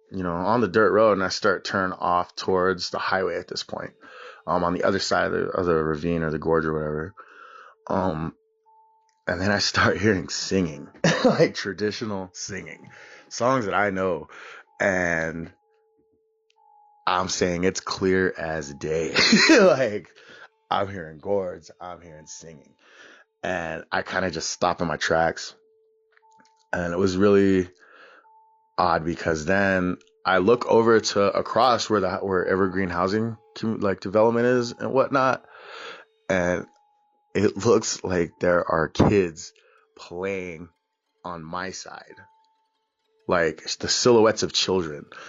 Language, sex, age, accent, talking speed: English, male, 20-39, American, 145 wpm